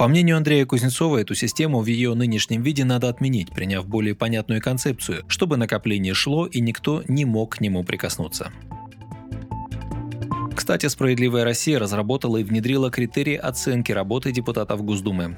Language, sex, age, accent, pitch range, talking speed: Russian, male, 20-39, native, 105-130 Hz, 145 wpm